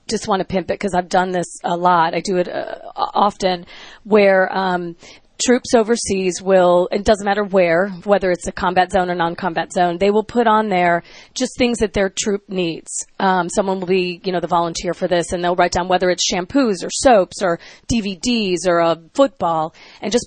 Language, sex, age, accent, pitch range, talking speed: English, female, 30-49, American, 175-210 Hz, 205 wpm